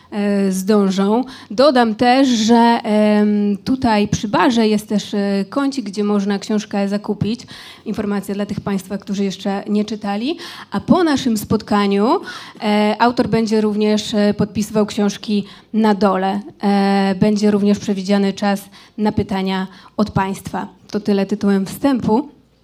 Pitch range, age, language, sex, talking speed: 205-230 Hz, 20-39, Polish, female, 120 wpm